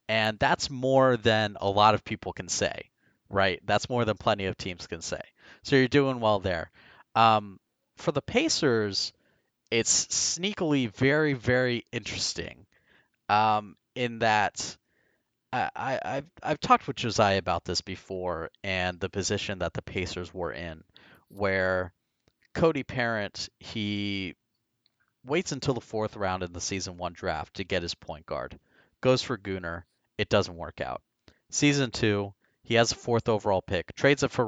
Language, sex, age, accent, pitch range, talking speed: English, male, 30-49, American, 95-120 Hz, 155 wpm